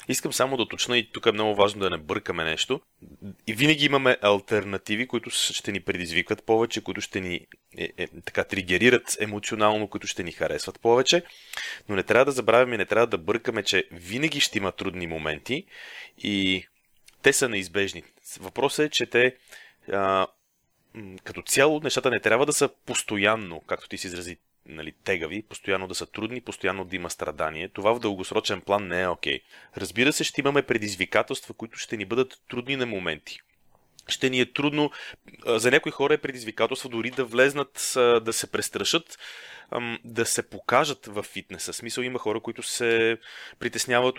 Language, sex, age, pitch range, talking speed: Bulgarian, male, 30-49, 100-125 Hz, 175 wpm